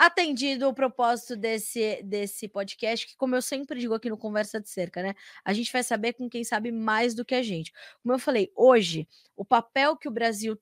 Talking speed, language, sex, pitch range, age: 215 wpm, Portuguese, female, 200-250 Hz, 20-39